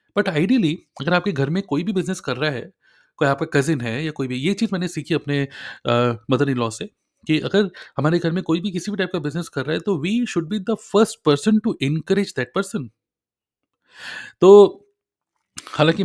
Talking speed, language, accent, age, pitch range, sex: 210 wpm, Hindi, native, 30-49, 130-170 Hz, male